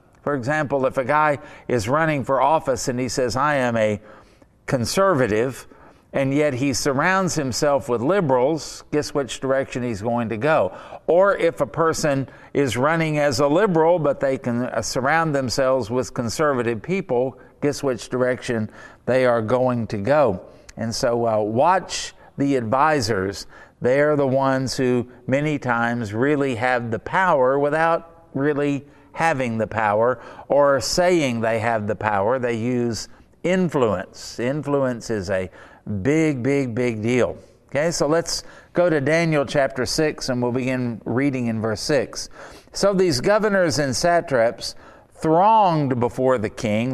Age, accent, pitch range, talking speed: 50-69, American, 120-150 Hz, 150 wpm